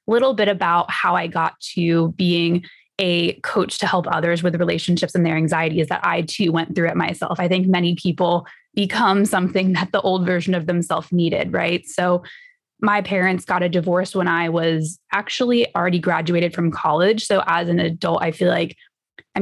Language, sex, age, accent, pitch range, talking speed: English, female, 20-39, American, 175-205 Hz, 190 wpm